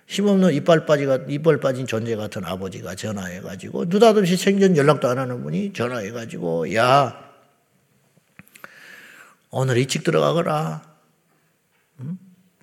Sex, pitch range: male, 110-170 Hz